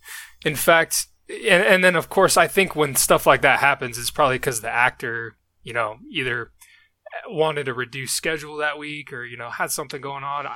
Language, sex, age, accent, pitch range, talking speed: English, male, 20-39, American, 125-160 Hz, 200 wpm